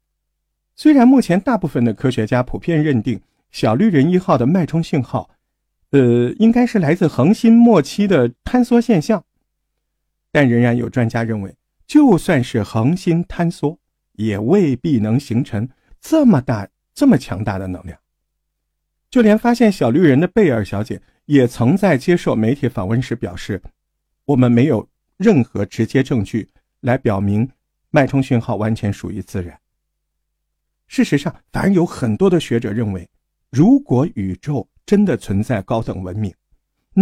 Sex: male